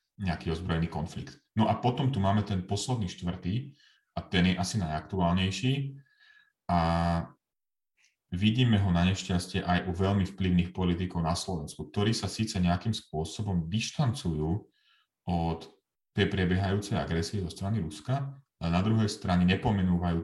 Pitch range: 85-100 Hz